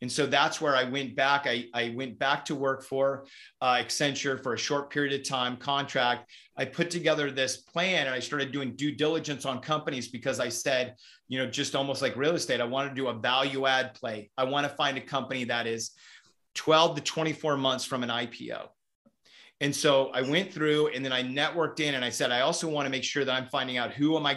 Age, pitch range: 30-49, 125-145 Hz